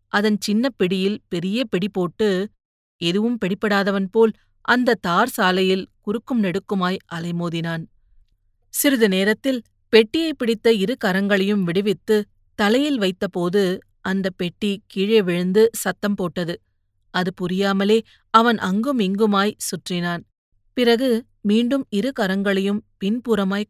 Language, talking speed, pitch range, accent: Tamil, 95 wpm, 180-220 Hz, native